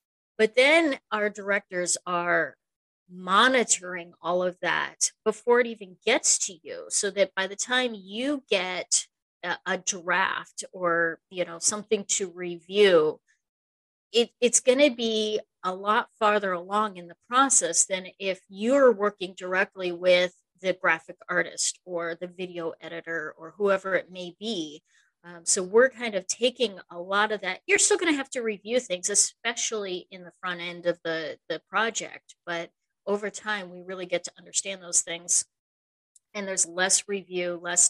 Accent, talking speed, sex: American, 160 wpm, female